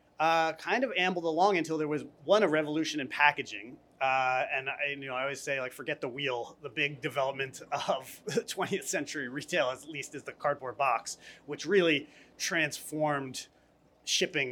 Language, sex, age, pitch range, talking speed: English, male, 30-49, 145-190 Hz, 175 wpm